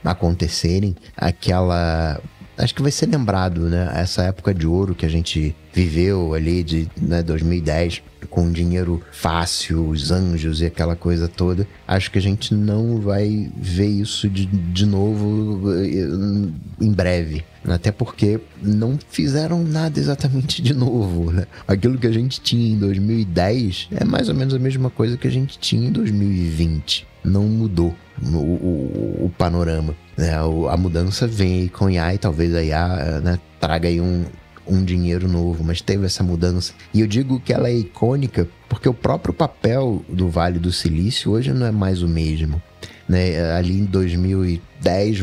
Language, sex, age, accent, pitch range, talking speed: Portuguese, male, 30-49, Brazilian, 85-105 Hz, 165 wpm